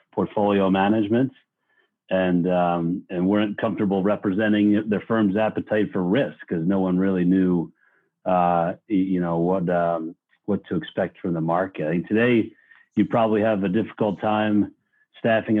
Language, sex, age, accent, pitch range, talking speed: English, male, 40-59, American, 90-110 Hz, 155 wpm